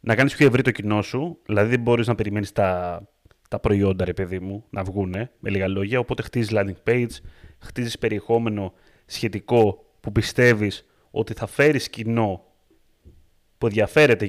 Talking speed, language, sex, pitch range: 160 wpm, Greek, male, 105-130 Hz